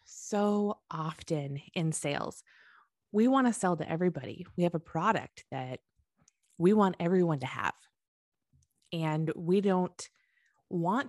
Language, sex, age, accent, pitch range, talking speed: English, female, 20-39, American, 160-210 Hz, 130 wpm